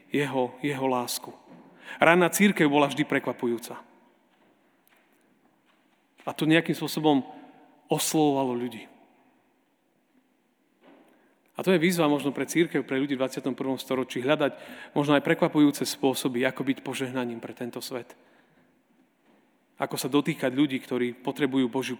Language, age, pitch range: Slovak, 40-59, 135-175 Hz